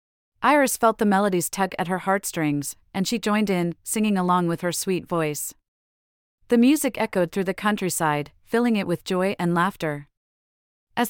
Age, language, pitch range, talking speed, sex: 40-59, English, 160-215 Hz, 170 wpm, female